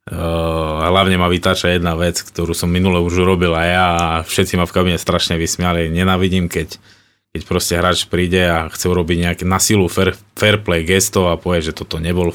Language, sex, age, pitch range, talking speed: Slovak, male, 20-39, 85-95 Hz, 205 wpm